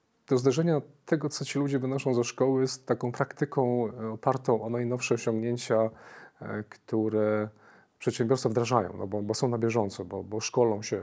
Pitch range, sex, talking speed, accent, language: 105-120 Hz, male, 160 wpm, native, Polish